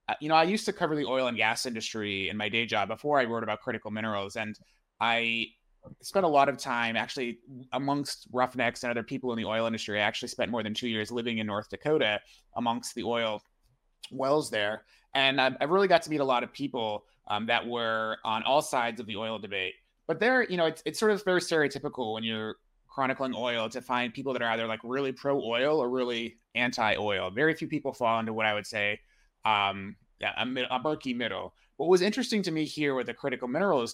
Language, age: English, 20-39